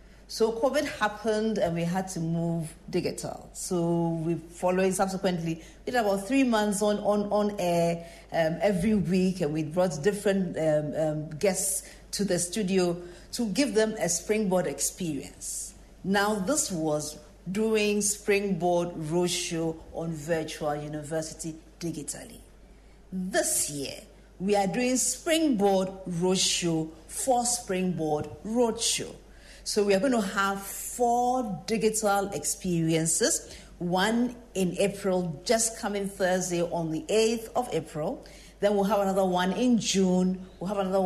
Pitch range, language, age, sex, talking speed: 170-215 Hz, English, 50-69, female, 130 wpm